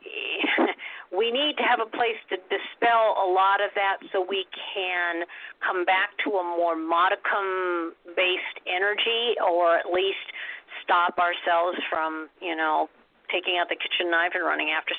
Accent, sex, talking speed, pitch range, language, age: American, female, 150 wpm, 170-210 Hz, English, 50-69